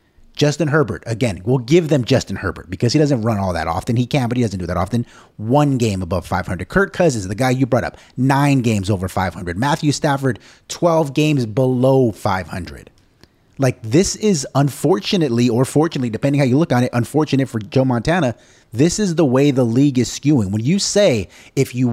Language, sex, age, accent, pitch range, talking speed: English, male, 30-49, American, 110-145 Hz, 200 wpm